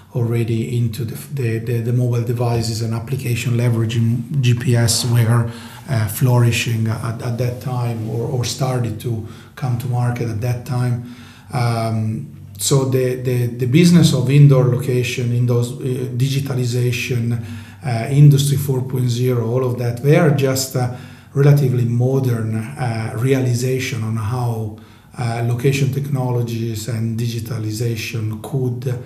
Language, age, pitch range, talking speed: English, 40-59, 115-130 Hz, 130 wpm